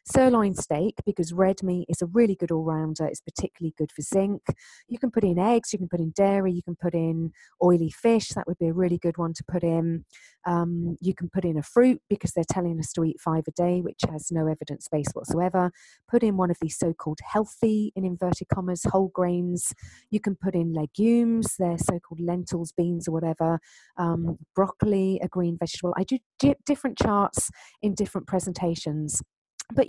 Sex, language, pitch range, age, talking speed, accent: female, English, 170-200 Hz, 40-59, 200 wpm, British